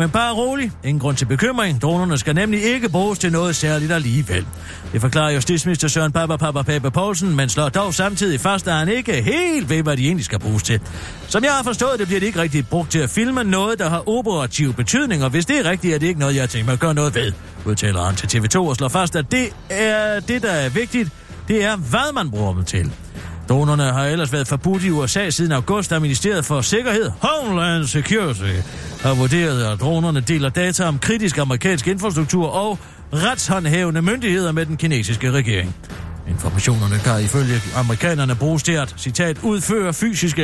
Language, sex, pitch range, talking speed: Danish, male, 130-195 Hz, 200 wpm